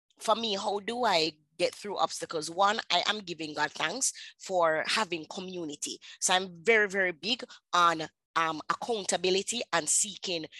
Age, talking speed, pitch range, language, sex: 20-39, 155 wpm, 165-205 Hz, English, female